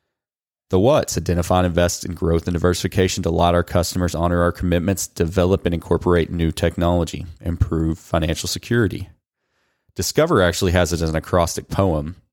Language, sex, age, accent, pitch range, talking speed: English, male, 30-49, American, 80-95 Hz, 155 wpm